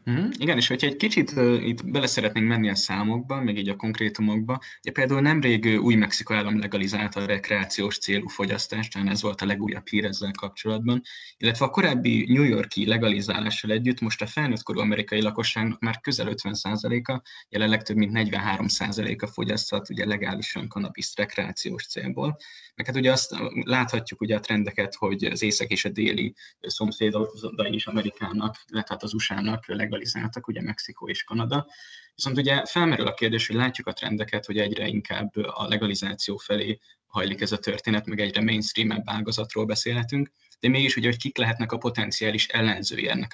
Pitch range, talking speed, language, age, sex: 105-115 Hz, 165 wpm, Hungarian, 20-39, male